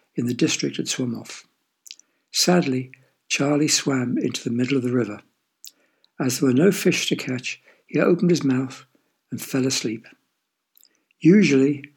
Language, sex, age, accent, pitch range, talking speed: English, male, 60-79, British, 125-160 Hz, 150 wpm